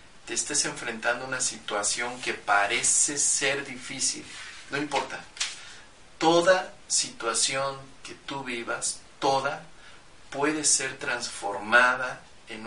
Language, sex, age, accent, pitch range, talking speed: Spanish, male, 40-59, Mexican, 115-140 Hz, 105 wpm